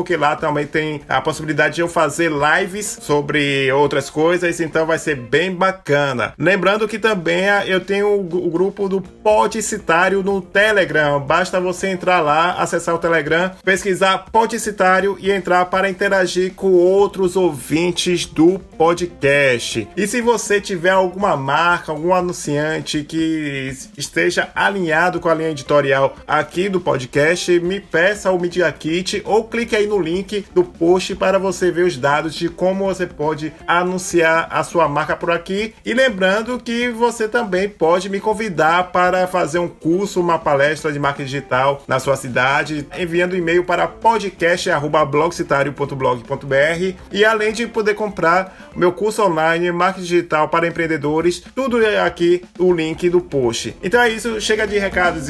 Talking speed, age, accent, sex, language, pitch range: 150 wpm, 20-39, Brazilian, male, Portuguese, 155-195 Hz